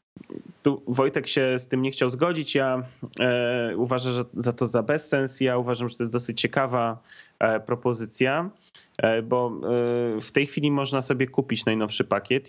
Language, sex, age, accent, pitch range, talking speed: Polish, male, 20-39, native, 105-125 Hz, 175 wpm